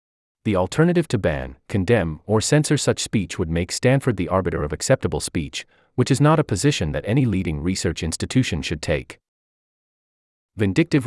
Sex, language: male, English